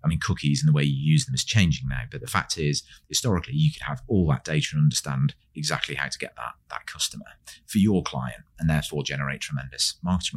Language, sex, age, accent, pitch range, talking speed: English, male, 30-49, British, 75-120 Hz, 230 wpm